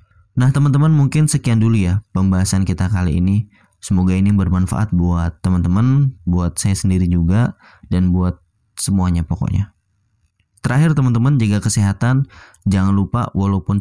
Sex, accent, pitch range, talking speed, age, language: male, native, 90-105 Hz, 130 wpm, 20-39, Indonesian